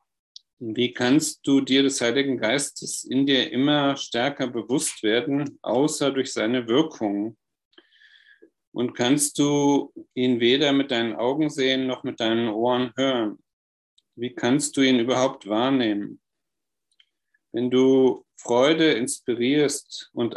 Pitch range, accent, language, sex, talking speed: 120-150 Hz, German, German, male, 125 wpm